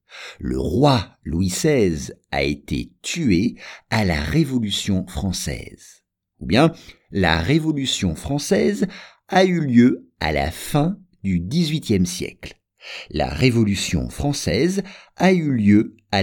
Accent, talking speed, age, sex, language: French, 120 wpm, 50-69, male, English